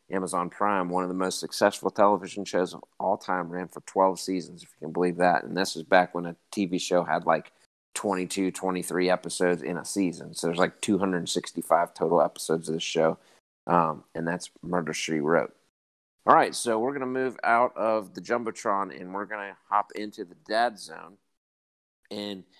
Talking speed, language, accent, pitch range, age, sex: 195 wpm, English, American, 90-105 Hz, 30-49, male